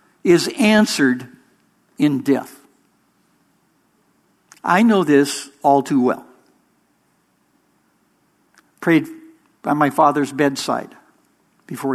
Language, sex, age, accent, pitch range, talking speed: English, male, 60-79, American, 135-170 Hz, 80 wpm